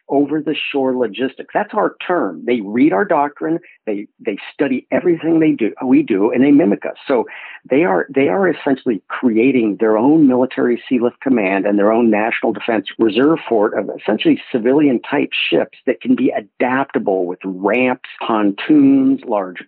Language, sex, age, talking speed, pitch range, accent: English, male, 50-69, 160 wpm, 110-145 Hz, American